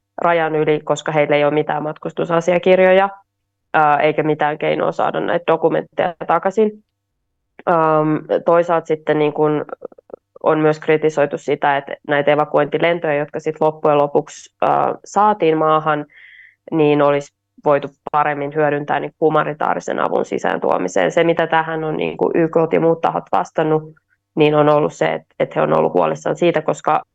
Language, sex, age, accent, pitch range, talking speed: Finnish, female, 20-39, native, 150-170 Hz, 135 wpm